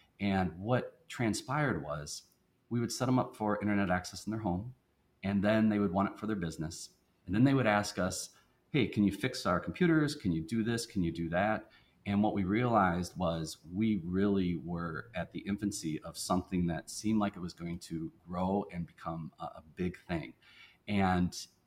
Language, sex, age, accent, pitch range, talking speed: English, male, 30-49, American, 90-105 Hz, 195 wpm